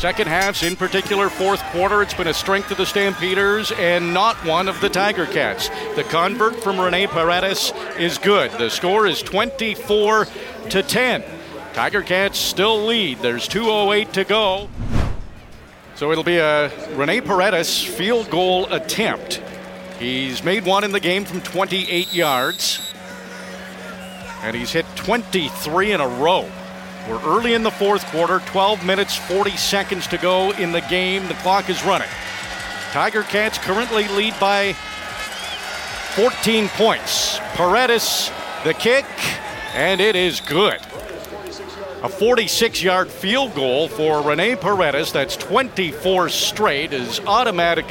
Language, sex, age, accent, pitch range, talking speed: English, male, 40-59, American, 170-205 Hz, 140 wpm